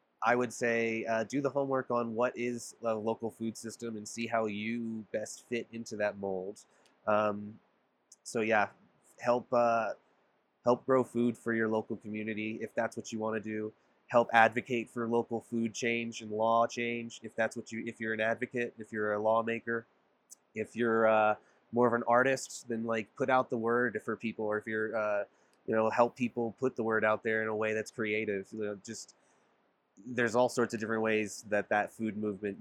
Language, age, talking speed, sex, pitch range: English, 20-39, 200 wpm, male, 105-120 Hz